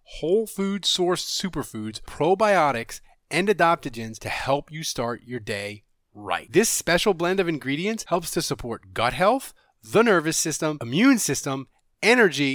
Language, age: English, 30-49